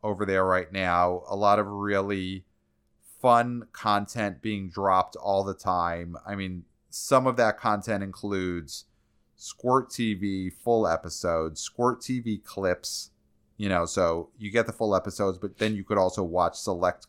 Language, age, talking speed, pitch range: English, 30-49, 155 wpm, 85-110 Hz